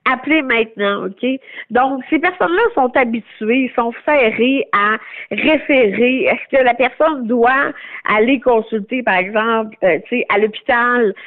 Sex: female